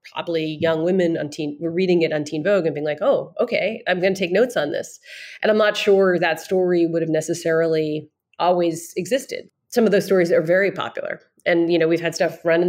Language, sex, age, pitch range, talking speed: English, female, 40-59, 160-185 Hz, 230 wpm